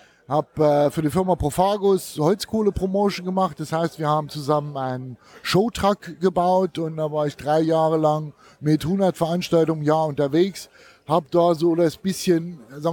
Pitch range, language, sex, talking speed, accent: 150-175 Hz, German, male, 160 wpm, German